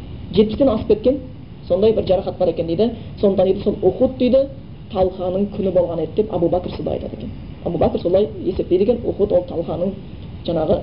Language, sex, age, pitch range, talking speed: Bulgarian, female, 30-49, 180-220 Hz, 190 wpm